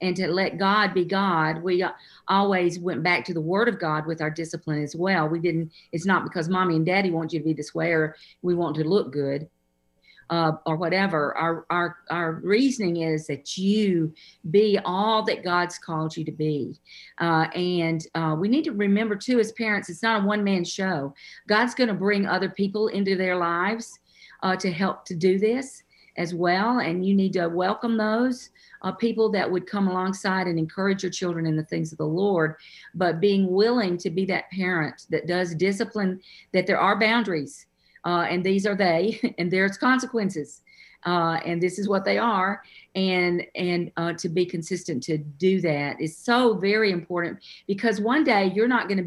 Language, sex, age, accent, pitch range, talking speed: English, female, 50-69, American, 165-200 Hz, 195 wpm